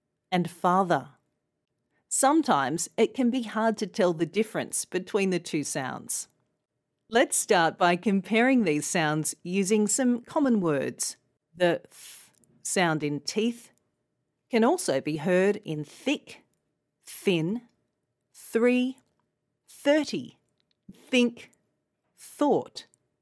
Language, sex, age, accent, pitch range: Korean, female, 40-59, Australian, 165-235 Hz